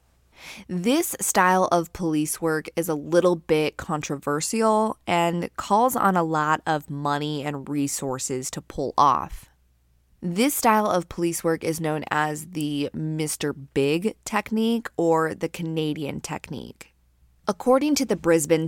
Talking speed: 135 wpm